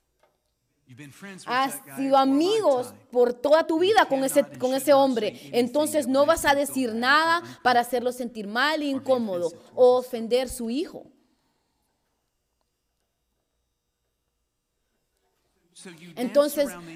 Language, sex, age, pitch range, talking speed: Spanish, female, 30-49, 225-285 Hz, 100 wpm